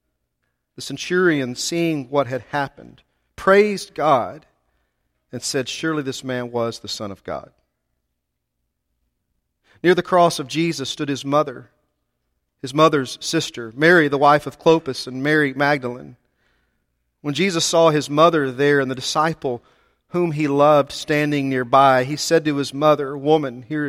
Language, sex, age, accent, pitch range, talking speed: English, male, 40-59, American, 110-155 Hz, 145 wpm